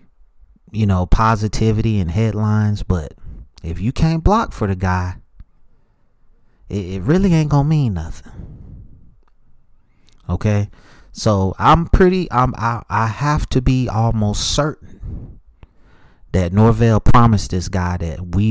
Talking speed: 125 wpm